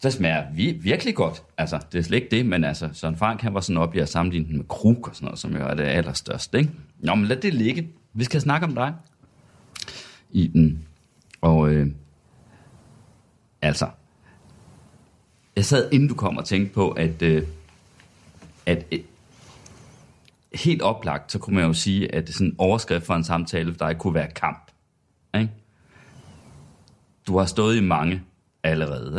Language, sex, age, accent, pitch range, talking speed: Danish, male, 30-49, native, 80-115 Hz, 180 wpm